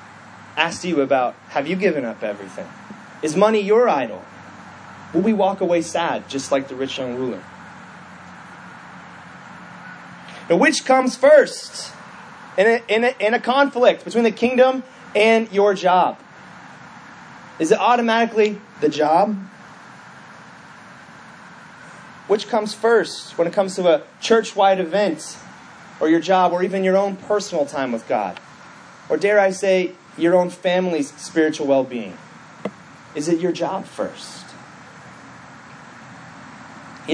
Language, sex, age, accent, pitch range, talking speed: English, male, 30-49, American, 145-220 Hz, 125 wpm